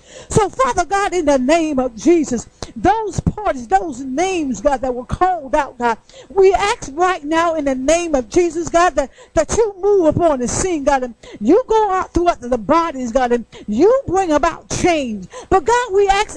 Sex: female